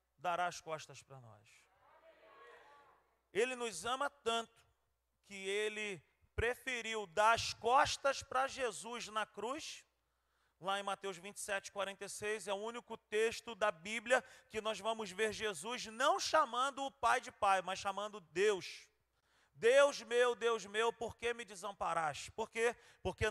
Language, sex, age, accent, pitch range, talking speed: Portuguese, male, 40-59, Brazilian, 185-235 Hz, 140 wpm